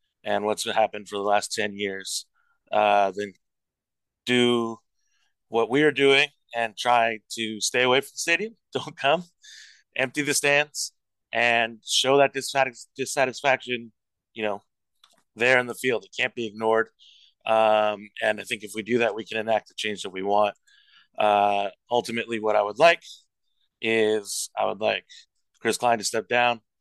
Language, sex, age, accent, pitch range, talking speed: English, male, 30-49, American, 105-130 Hz, 165 wpm